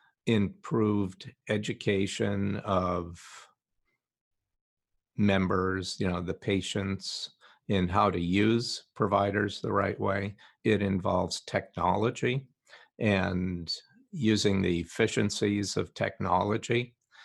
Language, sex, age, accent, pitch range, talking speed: English, male, 50-69, American, 90-110 Hz, 85 wpm